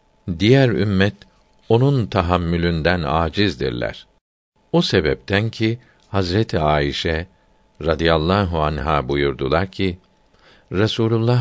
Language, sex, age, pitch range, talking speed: Turkish, male, 60-79, 85-110 Hz, 80 wpm